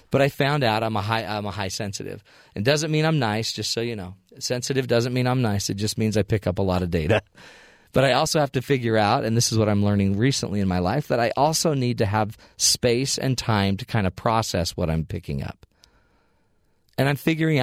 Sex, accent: male, American